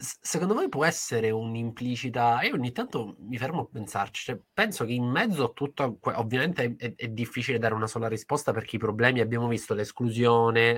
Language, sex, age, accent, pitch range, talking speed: Italian, male, 20-39, native, 115-150 Hz, 185 wpm